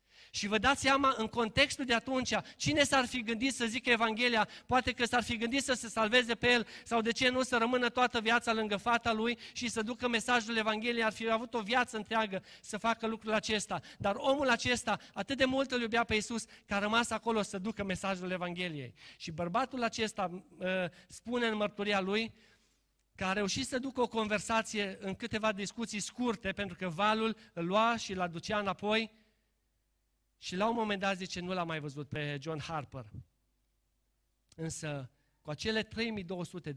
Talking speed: 185 wpm